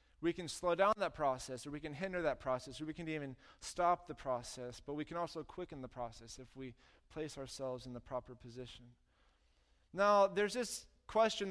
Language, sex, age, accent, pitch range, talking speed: English, male, 20-39, American, 130-160 Hz, 200 wpm